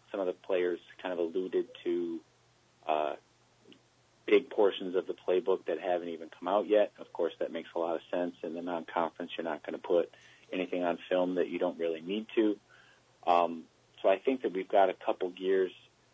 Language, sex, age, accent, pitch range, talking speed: English, male, 30-49, American, 85-120 Hz, 205 wpm